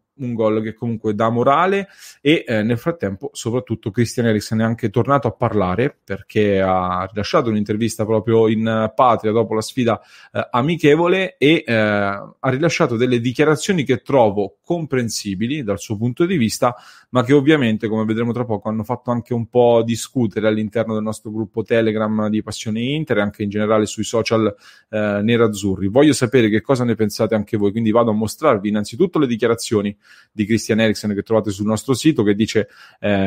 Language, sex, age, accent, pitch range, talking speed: English, male, 30-49, Italian, 110-125 Hz, 180 wpm